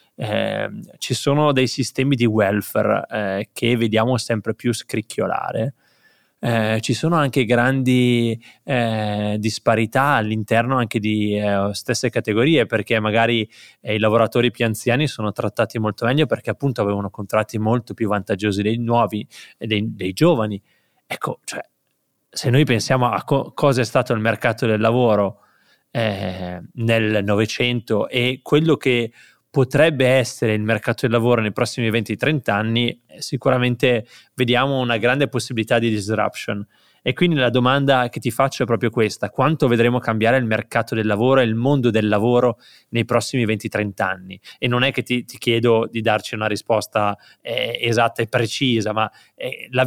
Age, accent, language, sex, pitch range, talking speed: 20-39, native, Italian, male, 110-130 Hz, 155 wpm